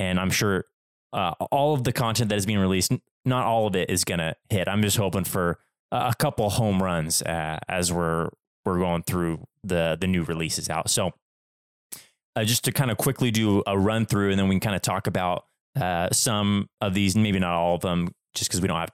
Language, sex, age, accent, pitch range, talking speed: English, male, 20-39, American, 90-110 Hz, 225 wpm